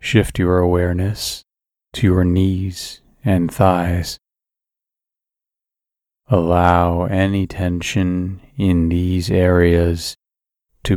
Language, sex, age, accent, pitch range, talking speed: English, male, 30-49, American, 85-95 Hz, 80 wpm